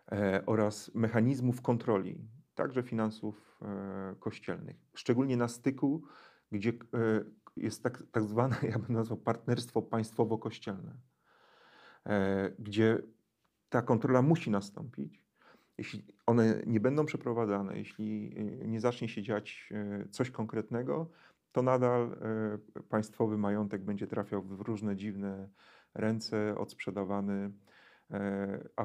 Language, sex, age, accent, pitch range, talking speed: Polish, male, 40-59, native, 100-115 Hz, 100 wpm